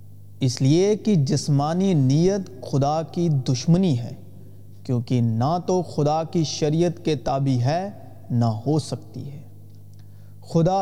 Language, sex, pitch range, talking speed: Urdu, male, 120-175 Hz, 130 wpm